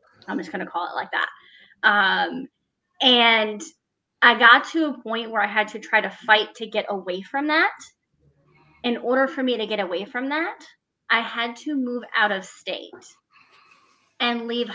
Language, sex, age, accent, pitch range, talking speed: English, female, 20-39, American, 205-255 Hz, 185 wpm